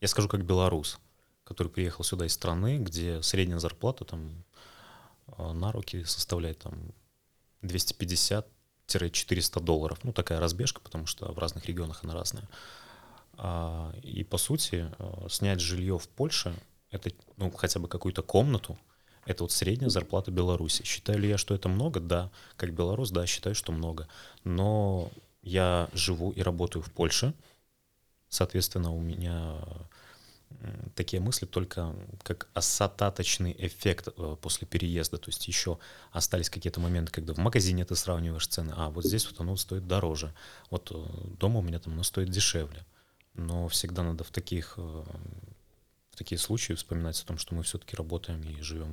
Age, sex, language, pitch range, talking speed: 30-49, male, Russian, 85-100 Hz, 145 wpm